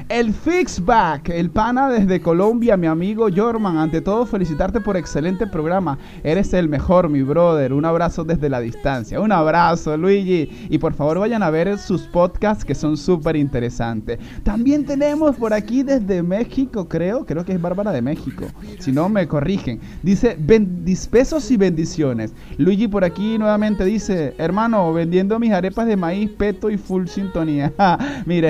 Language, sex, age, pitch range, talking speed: Spanish, male, 30-49, 165-225 Hz, 160 wpm